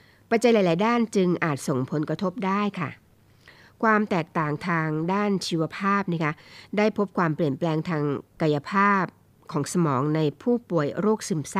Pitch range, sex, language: 150-195 Hz, female, Thai